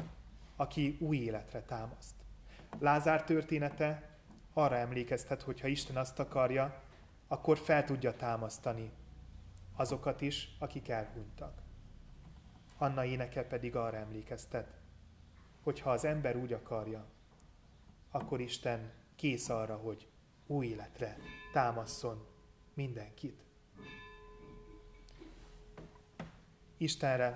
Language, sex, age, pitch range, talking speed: Hungarian, male, 30-49, 110-145 Hz, 90 wpm